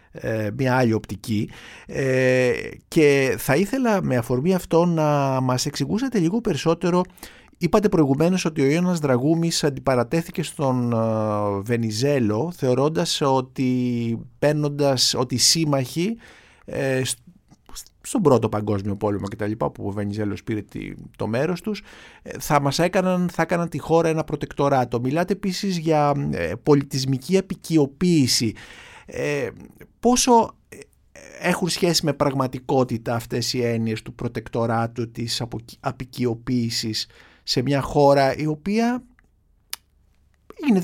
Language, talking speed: Greek, 105 wpm